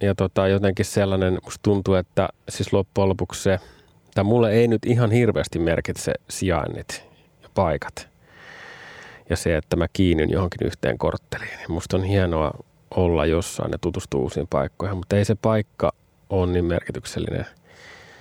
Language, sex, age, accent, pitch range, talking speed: Finnish, male, 30-49, native, 90-110 Hz, 150 wpm